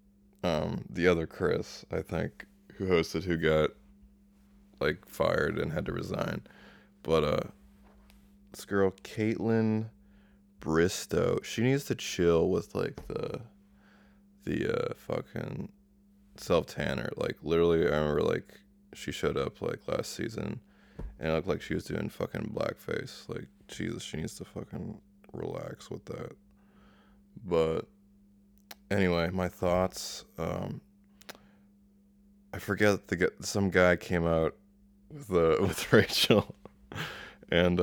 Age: 20-39